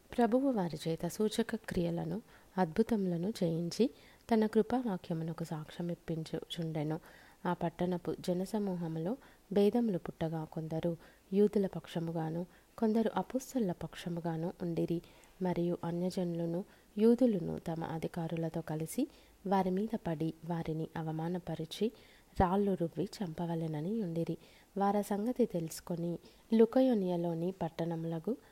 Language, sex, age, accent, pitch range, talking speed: Telugu, female, 20-39, native, 165-200 Hz, 95 wpm